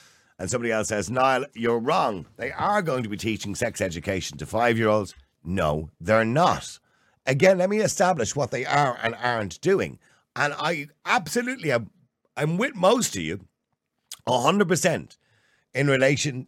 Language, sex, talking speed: English, male, 155 wpm